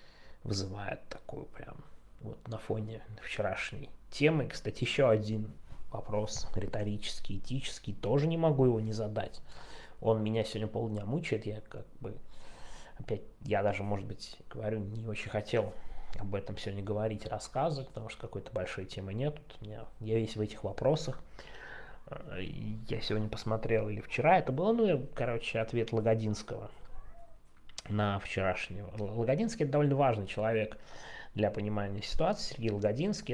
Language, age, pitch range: Russian, 20-39, 105-125 Hz